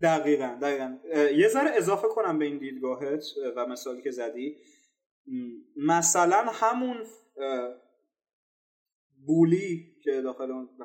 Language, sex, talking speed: Persian, male, 105 wpm